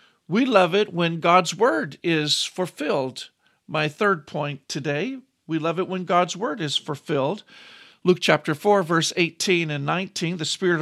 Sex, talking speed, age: male, 160 wpm, 50-69